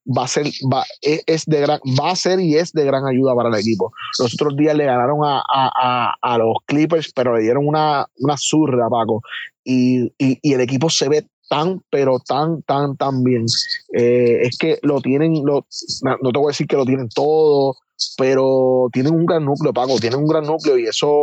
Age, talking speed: 30-49, 215 wpm